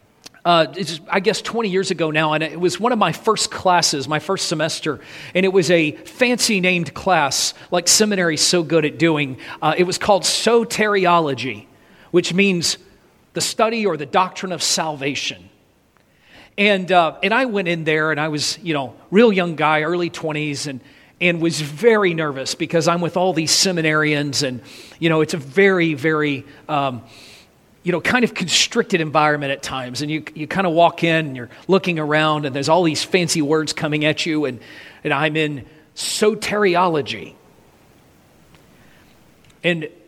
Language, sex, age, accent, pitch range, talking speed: English, male, 40-59, American, 145-180 Hz, 170 wpm